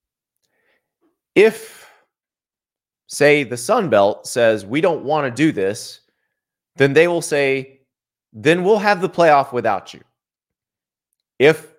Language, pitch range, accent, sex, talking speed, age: English, 120-200 Hz, American, male, 120 wpm, 30-49